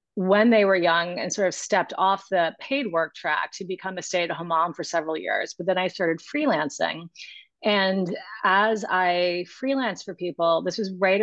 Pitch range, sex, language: 170-215 Hz, female, English